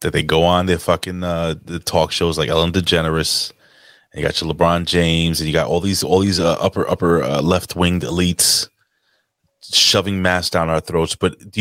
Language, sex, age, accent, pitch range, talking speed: English, male, 30-49, American, 90-125 Hz, 200 wpm